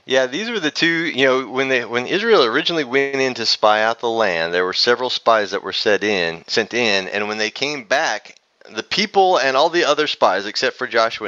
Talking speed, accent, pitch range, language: 235 wpm, American, 110-140 Hz, English